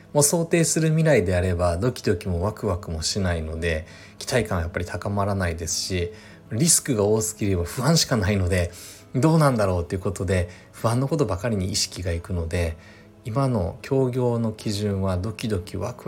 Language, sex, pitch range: Japanese, male, 95-130 Hz